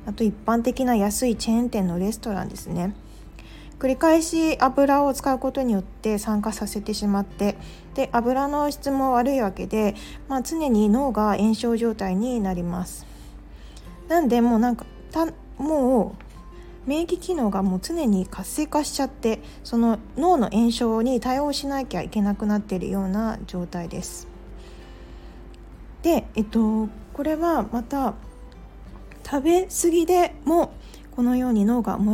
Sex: female